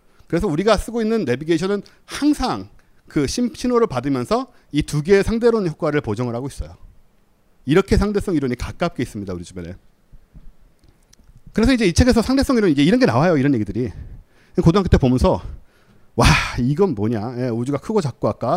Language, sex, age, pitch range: Korean, male, 40-59, 120-185 Hz